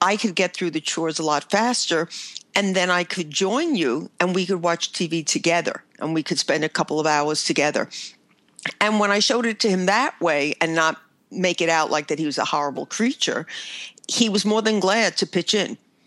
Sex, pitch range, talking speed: female, 160-205 Hz, 220 wpm